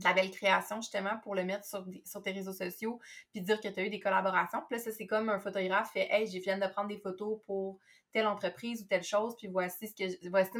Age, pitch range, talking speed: 20-39, 195-235 Hz, 270 wpm